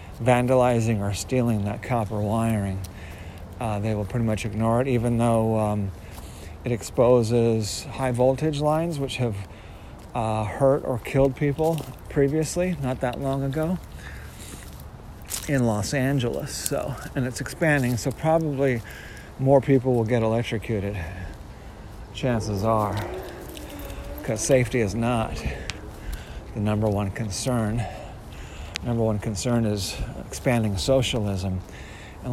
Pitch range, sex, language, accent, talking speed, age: 100-135 Hz, male, English, American, 120 wpm, 40-59